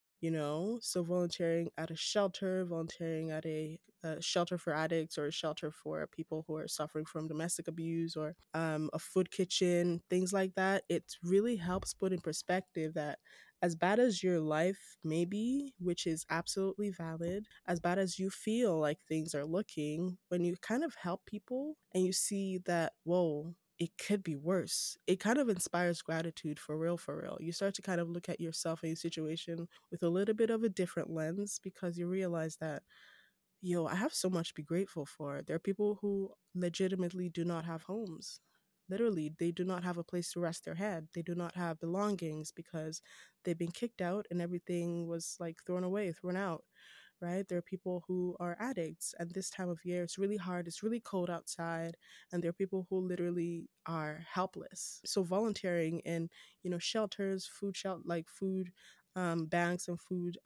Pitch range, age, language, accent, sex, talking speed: 165-190 Hz, 10-29, English, American, female, 195 wpm